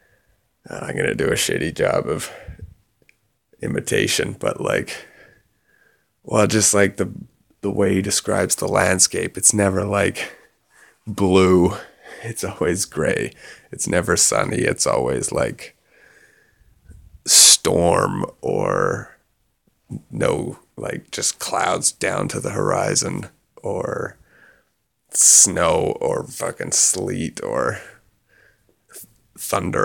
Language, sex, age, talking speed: English, male, 20-39, 105 wpm